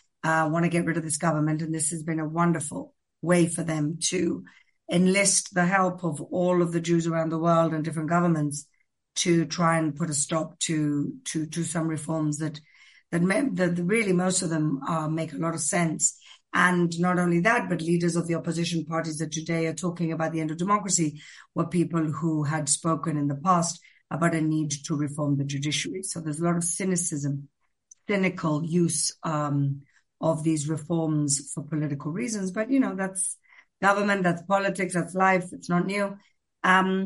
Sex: female